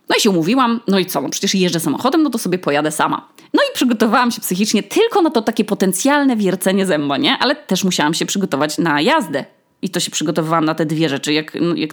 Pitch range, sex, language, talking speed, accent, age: 170-260 Hz, female, Polish, 235 wpm, native, 20-39